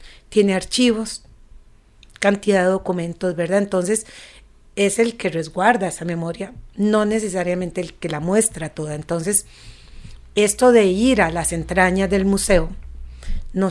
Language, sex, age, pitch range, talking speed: English, female, 40-59, 170-205 Hz, 130 wpm